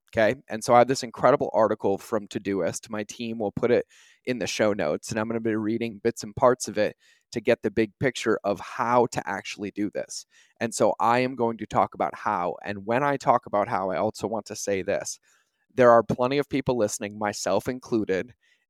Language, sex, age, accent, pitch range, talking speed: English, male, 30-49, American, 105-125 Hz, 225 wpm